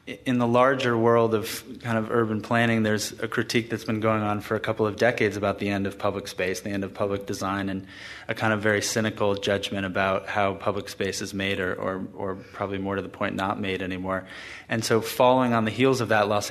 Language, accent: English, American